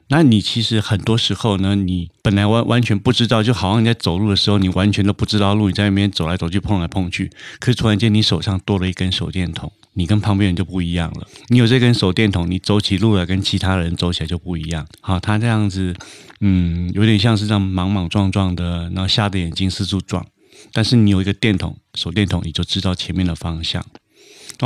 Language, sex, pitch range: Chinese, male, 90-110 Hz